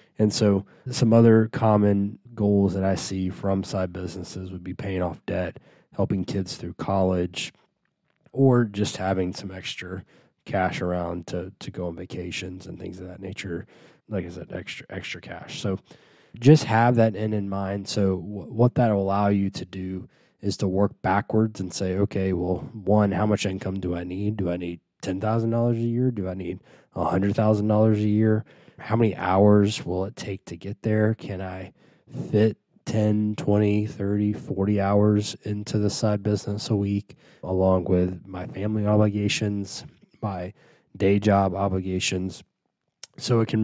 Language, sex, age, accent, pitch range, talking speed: English, male, 20-39, American, 95-105 Hz, 165 wpm